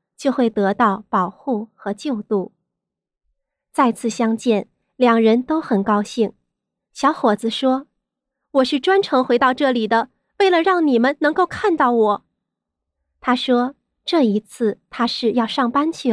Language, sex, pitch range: Chinese, female, 215-275 Hz